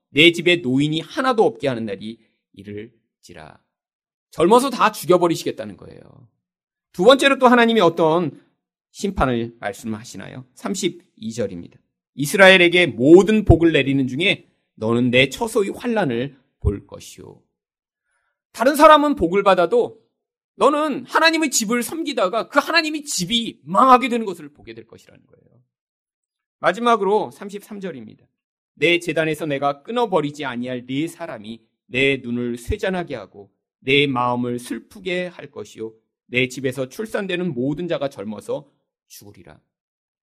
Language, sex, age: Korean, male, 30-49